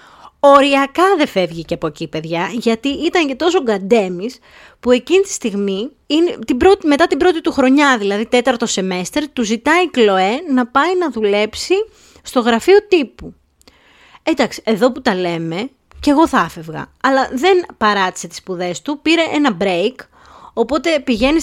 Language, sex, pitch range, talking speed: Greek, female, 210-280 Hz, 155 wpm